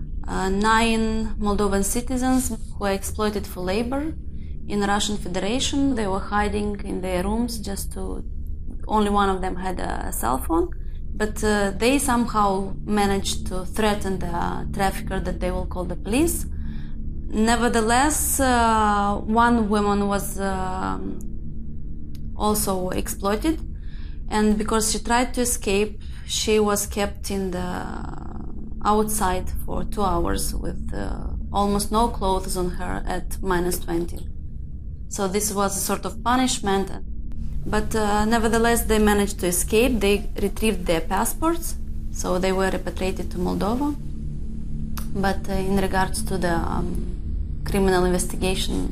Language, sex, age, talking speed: English, female, 20-39, 135 wpm